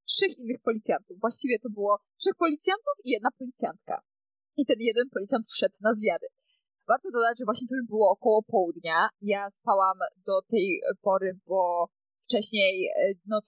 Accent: native